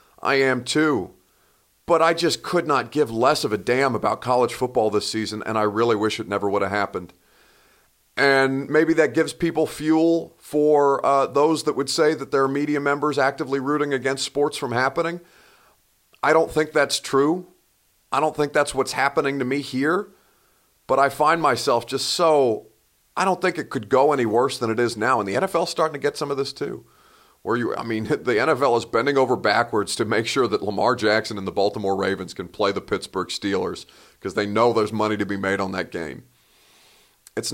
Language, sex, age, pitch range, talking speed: English, male, 40-59, 110-150 Hz, 205 wpm